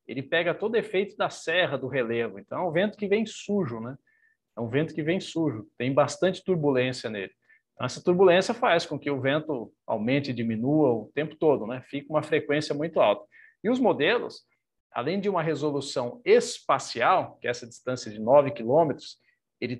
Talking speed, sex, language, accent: 185 wpm, male, Portuguese, Brazilian